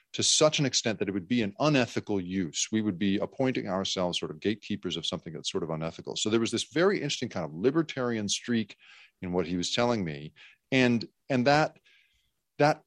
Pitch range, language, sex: 95-120 Hz, English, male